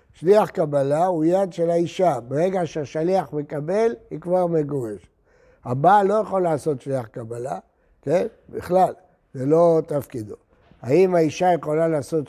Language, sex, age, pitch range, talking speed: Hebrew, male, 60-79, 130-175 Hz, 130 wpm